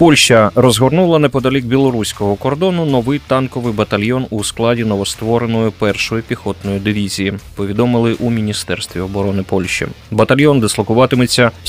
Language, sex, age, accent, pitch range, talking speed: Ukrainian, male, 30-49, native, 105-130 Hz, 115 wpm